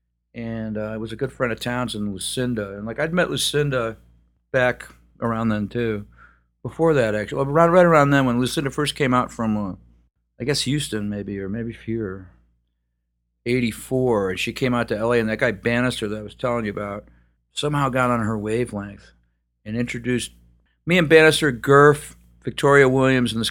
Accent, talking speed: American, 180 wpm